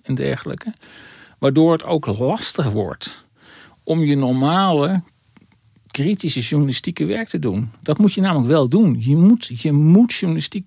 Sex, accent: male, Dutch